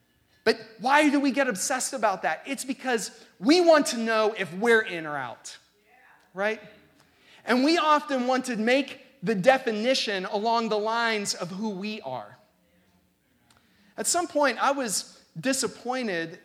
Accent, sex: American, male